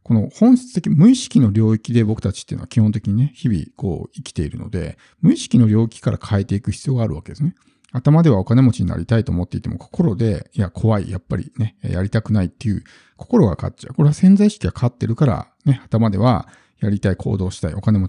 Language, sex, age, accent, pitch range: Japanese, male, 50-69, native, 105-145 Hz